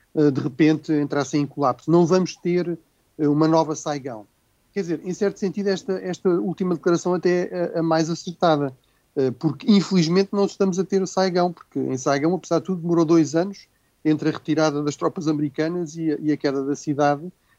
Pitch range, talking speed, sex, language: 140-170 Hz, 190 wpm, male, Portuguese